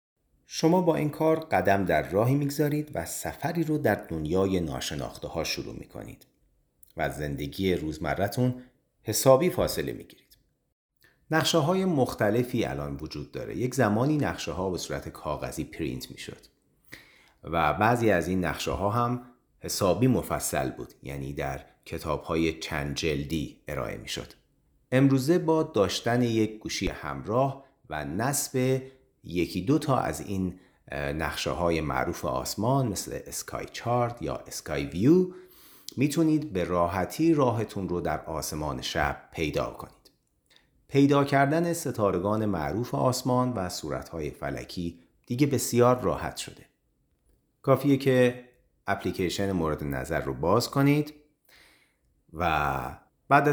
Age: 40-59